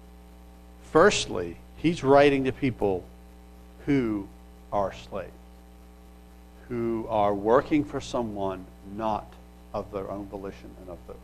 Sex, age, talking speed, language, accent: male, 60-79, 110 wpm, English, American